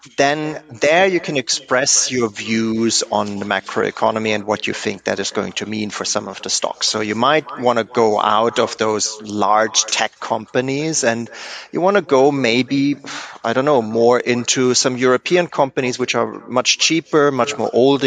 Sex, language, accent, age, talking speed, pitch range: male, English, German, 30-49, 195 wpm, 110-145 Hz